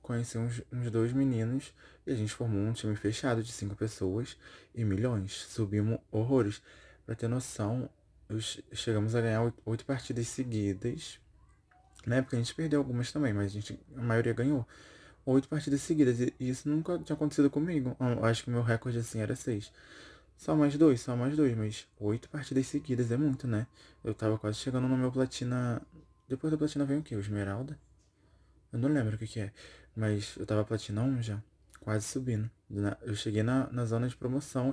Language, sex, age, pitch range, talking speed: Portuguese, male, 20-39, 105-130 Hz, 185 wpm